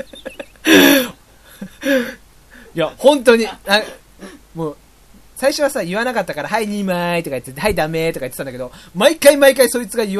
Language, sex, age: Japanese, male, 30-49